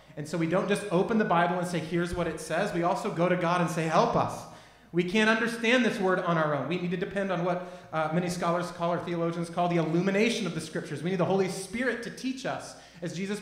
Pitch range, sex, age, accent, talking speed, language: 140-175 Hz, male, 30-49, American, 265 wpm, English